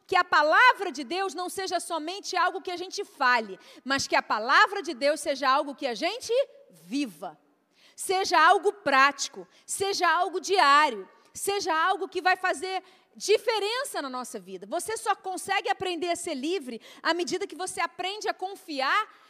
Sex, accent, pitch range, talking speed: female, Brazilian, 295-390 Hz, 170 wpm